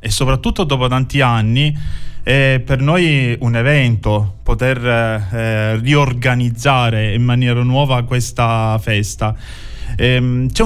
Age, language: 20-39, Italian